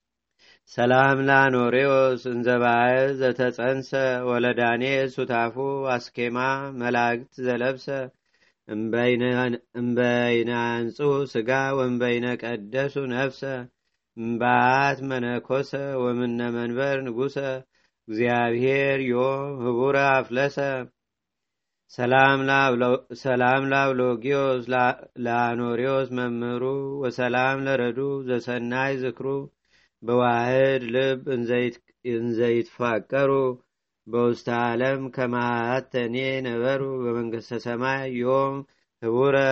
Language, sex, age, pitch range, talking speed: Amharic, male, 30-49, 120-135 Hz, 70 wpm